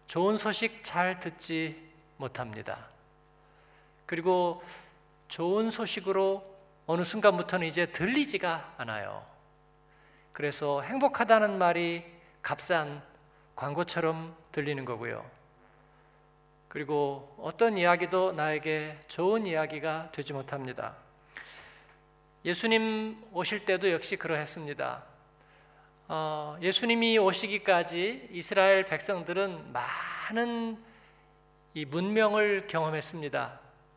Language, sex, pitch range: Korean, male, 150-195 Hz